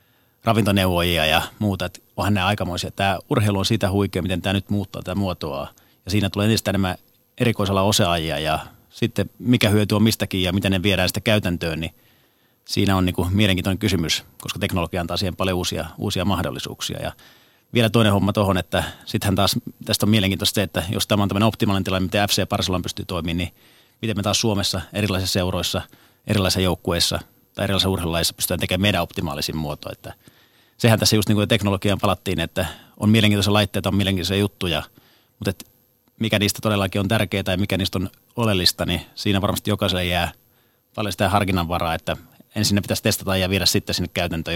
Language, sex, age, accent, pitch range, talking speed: Finnish, male, 30-49, native, 90-105 Hz, 180 wpm